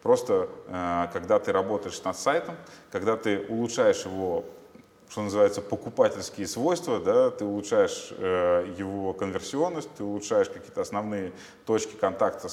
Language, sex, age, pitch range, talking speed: Russian, male, 20-39, 90-120 Hz, 125 wpm